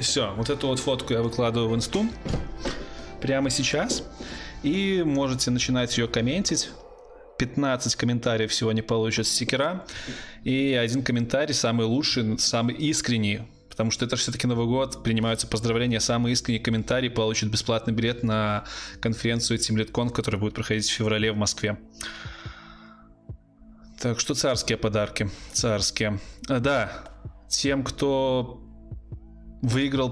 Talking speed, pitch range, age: 125 wpm, 110-130 Hz, 20-39